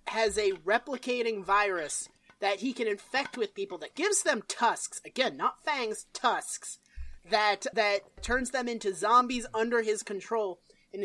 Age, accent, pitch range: 30-49, American, 210-260 Hz